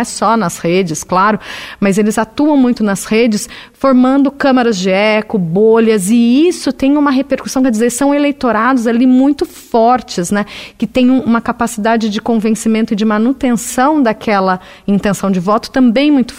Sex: female